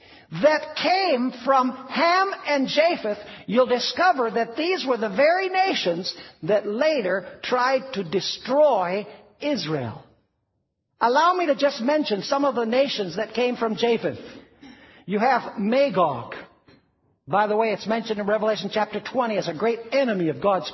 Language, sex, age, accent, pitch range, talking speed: English, male, 60-79, American, 215-295 Hz, 150 wpm